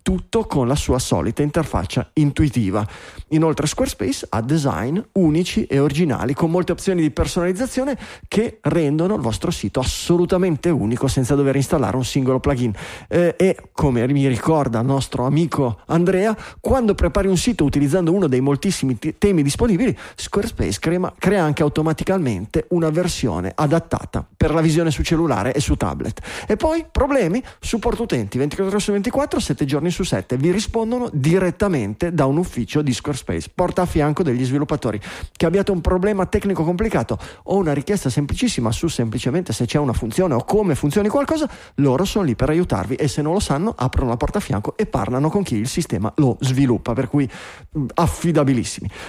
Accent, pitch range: native, 130-185 Hz